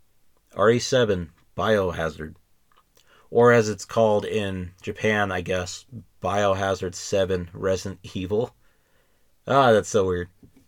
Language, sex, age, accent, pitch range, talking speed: English, male, 30-49, American, 90-115 Hz, 100 wpm